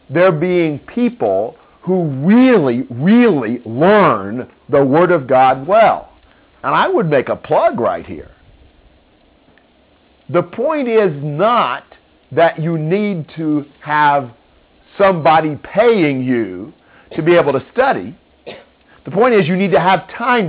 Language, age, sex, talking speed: English, 50-69, male, 130 wpm